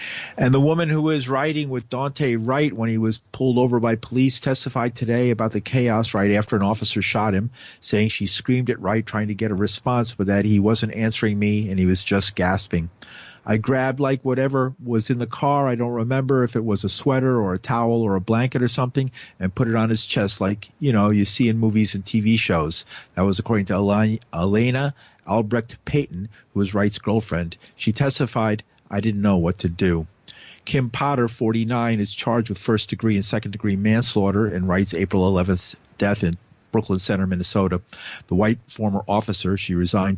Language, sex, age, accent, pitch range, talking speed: English, male, 50-69, American, 95-120 Hz, 195 wpm